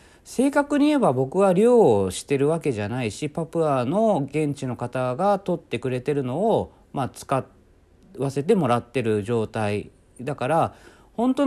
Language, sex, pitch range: Japanese, male, 115-190 Hz